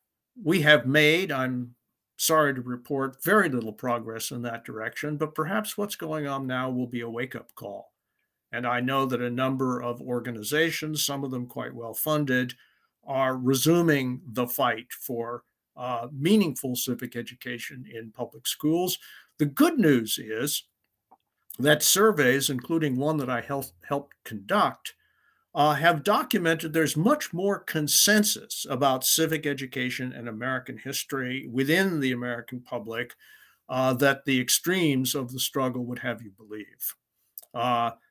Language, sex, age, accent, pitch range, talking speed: English, male, 50-69, American, 125-155 Hz, 145 wpm